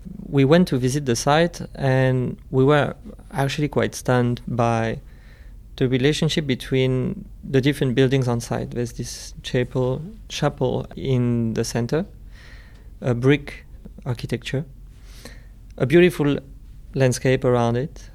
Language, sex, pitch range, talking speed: English, male, 120-140 Hz, 120 wpm